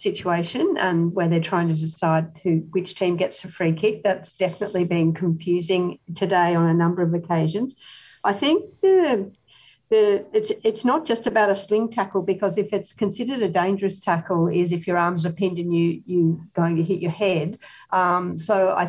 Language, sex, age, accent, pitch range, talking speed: English, female, 50-69, Australian, 170-200 Hz, 190 wpm